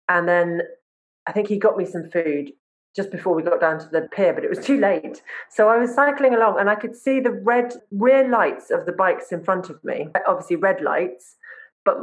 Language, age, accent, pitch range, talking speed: English, 30-49, British, 175-285 Hz, 230 wpm